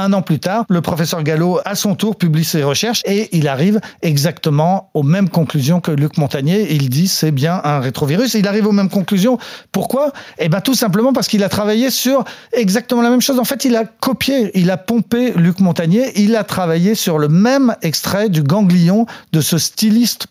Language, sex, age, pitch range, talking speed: French, male, 40-59, 150-205 Hz, 210 wpm